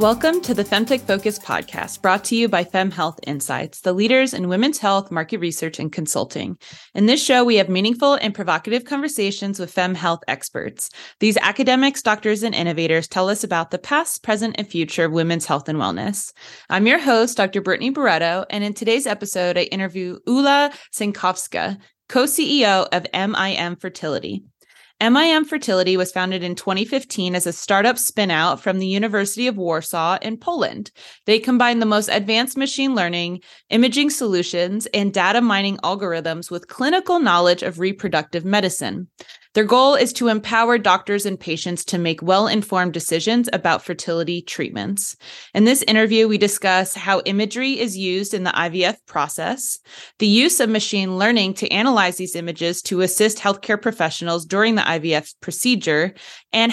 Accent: American